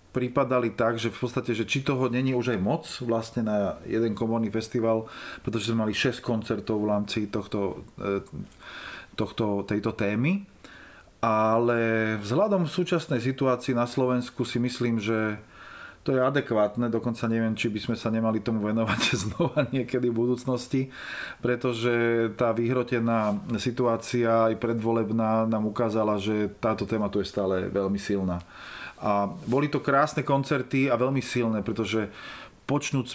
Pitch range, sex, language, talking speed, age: 110-125 Hz, male, Slovak, 140 wpm, 30-49